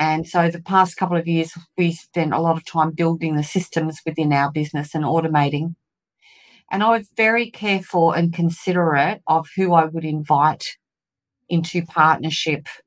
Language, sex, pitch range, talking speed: English, female, 150-170 Hz, 165 wpm